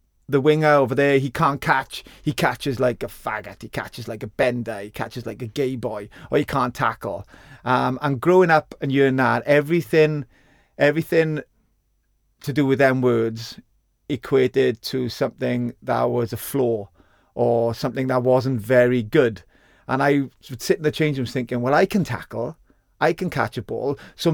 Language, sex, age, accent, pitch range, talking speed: English, male, 30-49, British, 120-145 Hz, 180 wpm